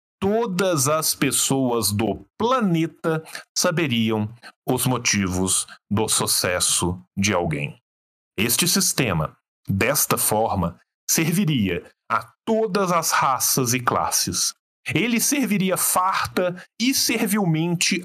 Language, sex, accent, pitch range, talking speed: Portuguese, male, Brazilian, 125-190 Hz, 95 wpm